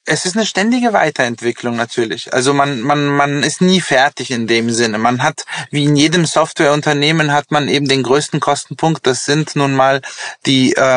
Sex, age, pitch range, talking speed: male, 20-39, 130-155 Hz, 175 wpm